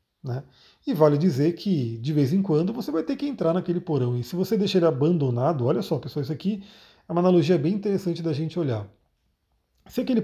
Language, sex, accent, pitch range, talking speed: Portuguese, male, Brazilian, 140-185 Hz, 215 wpm